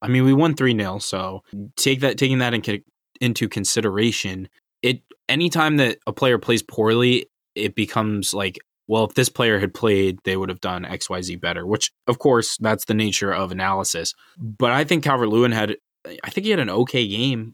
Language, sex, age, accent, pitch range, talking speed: English, male, 20-39, American, 100-120 Hz, 195 wpm